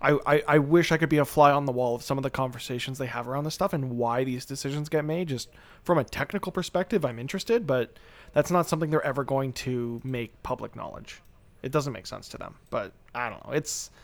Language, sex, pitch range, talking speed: English, male, 125-155 Hz, 240 wpm